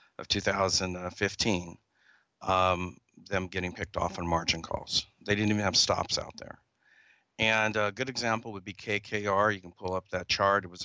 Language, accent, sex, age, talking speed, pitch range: English, American, male, 40-59, 175 wpm, 90-105 Hz